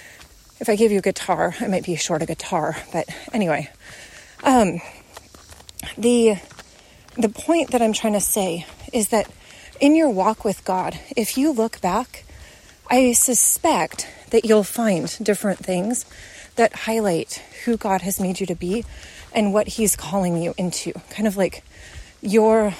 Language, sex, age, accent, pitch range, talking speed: English, female, 30-49, American, 185-255 Hz, 160 wpm